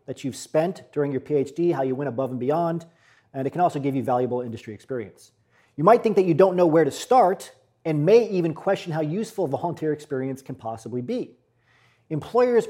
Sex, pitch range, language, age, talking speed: male, 130-175 Hz, English, 40-59, 205 wpm